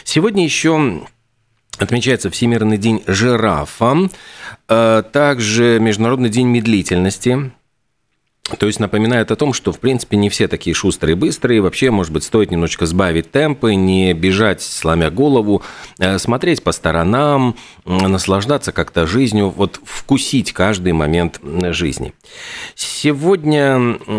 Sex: male